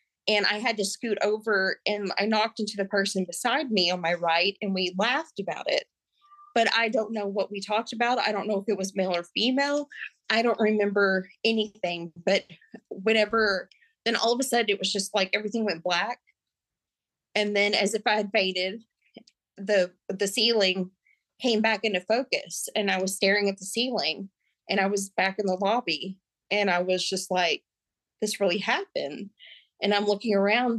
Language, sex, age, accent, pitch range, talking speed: English, female, 30-49, American, 195-225 Hz, 190 wpm